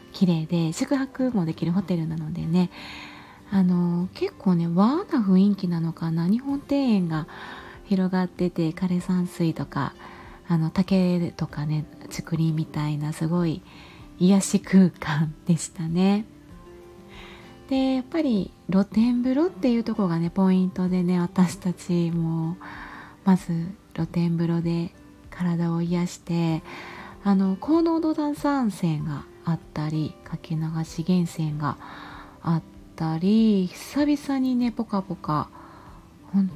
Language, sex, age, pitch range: Japanese, female, 30-49, 165-205 Hz